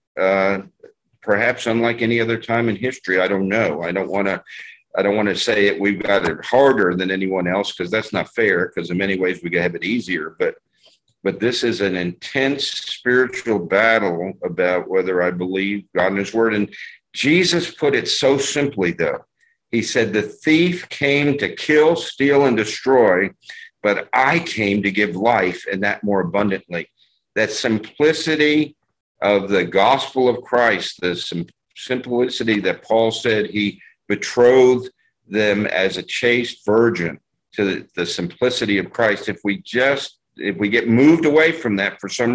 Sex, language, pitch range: male, English, 100-130 Hz